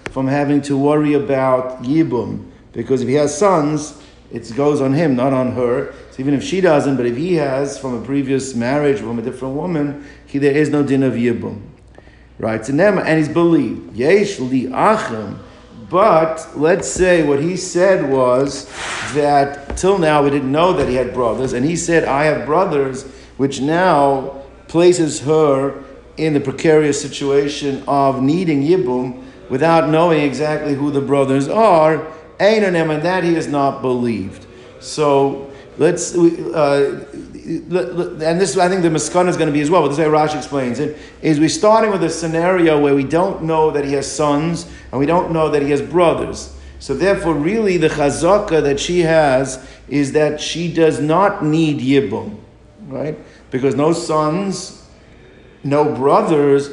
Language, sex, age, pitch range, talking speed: English, male, 50-69, 135-165 Hz, 170 wpm